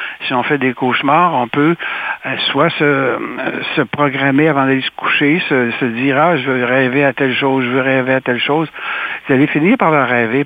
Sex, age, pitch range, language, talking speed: male, 60-79, 115-150 Hz, French, 210 wpm